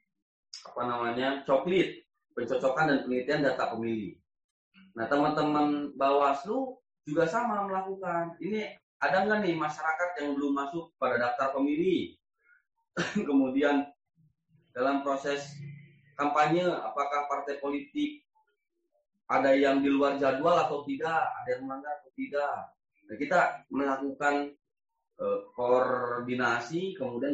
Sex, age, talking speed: male, 30-49, 105 wpm